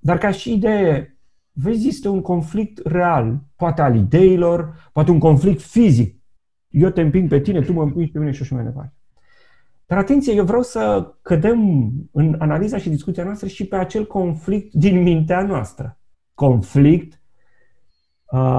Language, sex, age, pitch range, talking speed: Romanian, male, 40-59, 135-180 Hz, 165 wpm